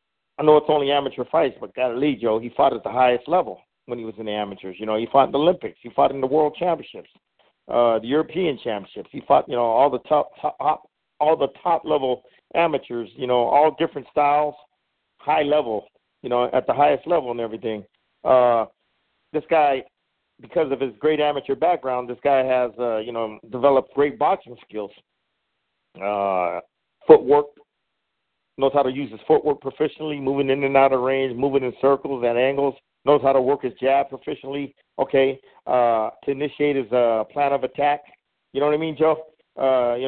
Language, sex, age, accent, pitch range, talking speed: English, male, 50-69, American, 120-145 Hz, 195 wpm